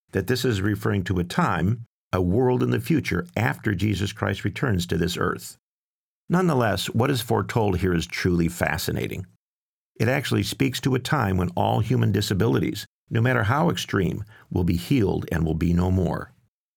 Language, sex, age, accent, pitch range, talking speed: English, male, 50-69, American, 90-110 Hz, 175 wpm